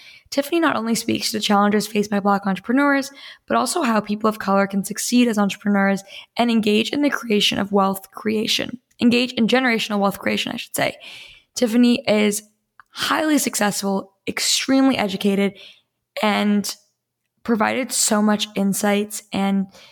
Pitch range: 200-230 Hz